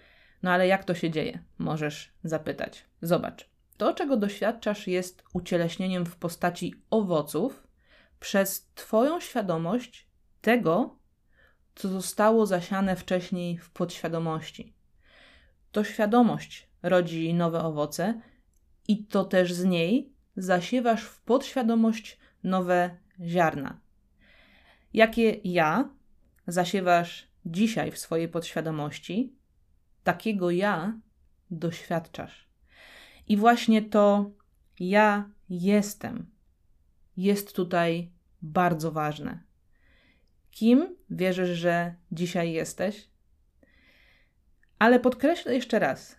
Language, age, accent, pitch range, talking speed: Polish, 20-39, native, 170-215 Hz, 90 wpm